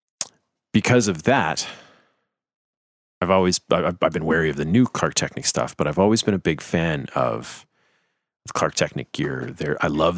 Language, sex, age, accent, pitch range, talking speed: English, male, 30-49, American, 85-115 Hz, 165 wpm